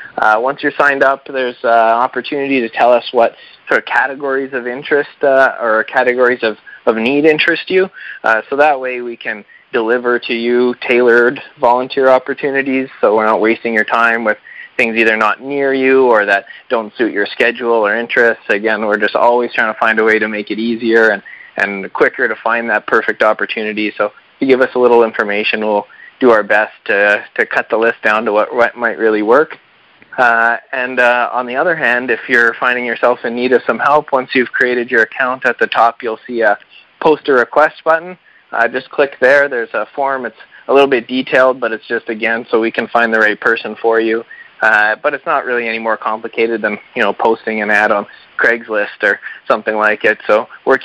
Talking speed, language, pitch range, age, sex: 210 wpm, English, 115-130 Hz, 20-39, male